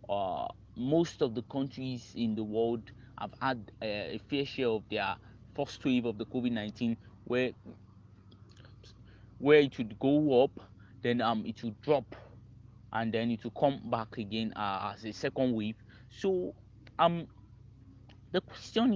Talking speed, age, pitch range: 150 wpm, 30-49, 105-125 Hz